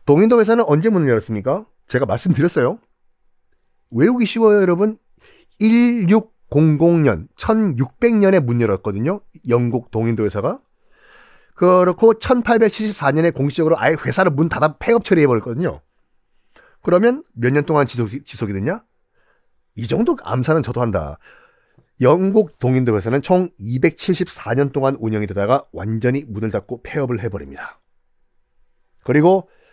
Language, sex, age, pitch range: Korean, male, 40-59, 120-205 Hz